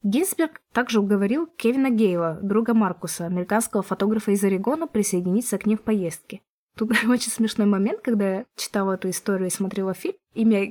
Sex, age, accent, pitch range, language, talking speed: female, 20-39, native, 195-240 Hz, Russian, 160 wpm